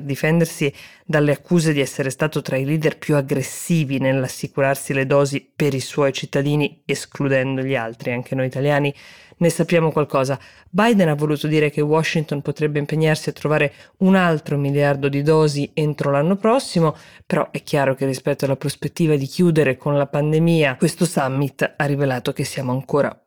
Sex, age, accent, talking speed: female, 20-39, native, 165 wpm